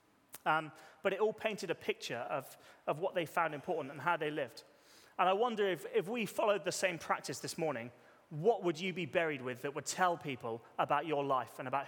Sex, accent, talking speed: male, British, 220 wpm